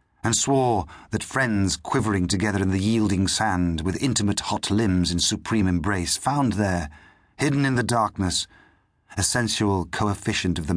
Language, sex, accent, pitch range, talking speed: English, male, British, 85-110 Hz, 155 wpm